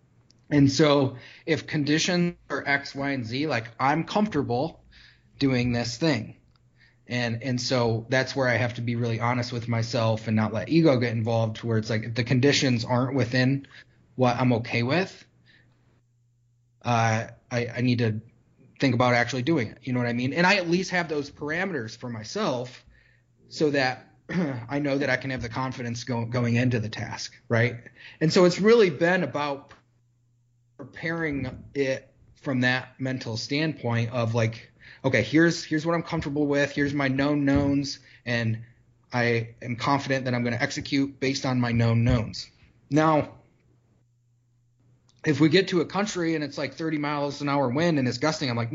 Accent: American